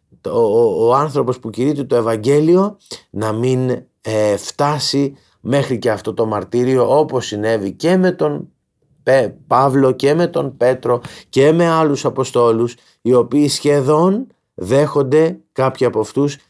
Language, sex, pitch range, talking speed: Greek, male, 115-150 Hz, 130 wpm